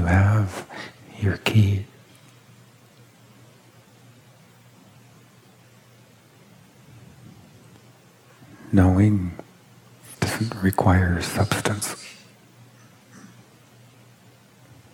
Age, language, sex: 50-69, English, male